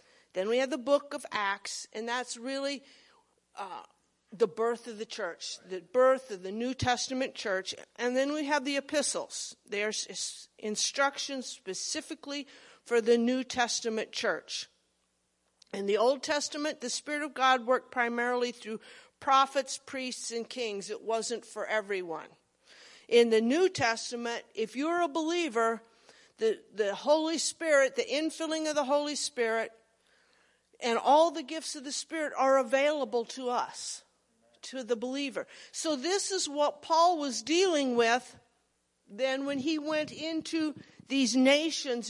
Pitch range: 235-300 Hz